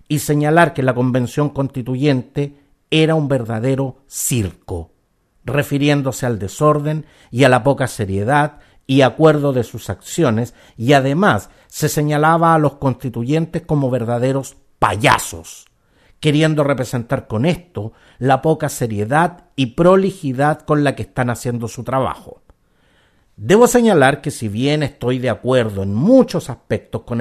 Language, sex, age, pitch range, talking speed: Spanish, male, 50-69, 115-155 Hz, 135 wpm